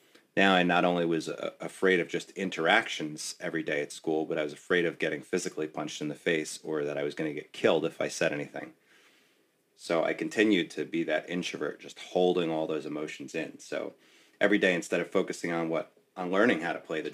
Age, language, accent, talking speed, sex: 30-49, English, American, 220 wpm, male